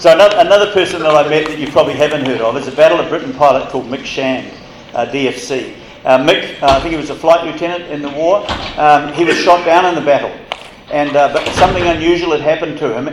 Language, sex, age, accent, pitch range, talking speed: English, male, 50-69, Australian, 135-165 Hz, 240 wpm